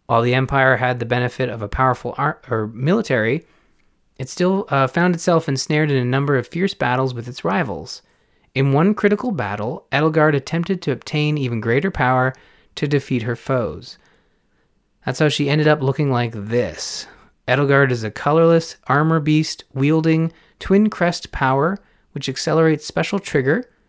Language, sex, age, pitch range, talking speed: English, male, 30-49, 125-150 Hz, 150 wpm